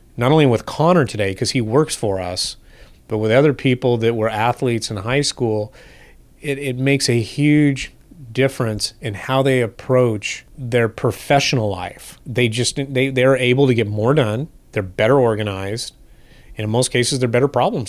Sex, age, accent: male, 30-49, American